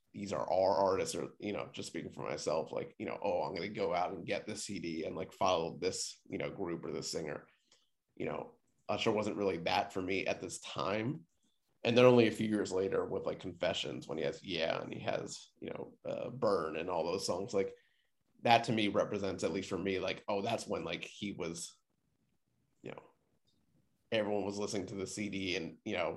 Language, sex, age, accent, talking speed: English, male, 30-49, American, 220 wpm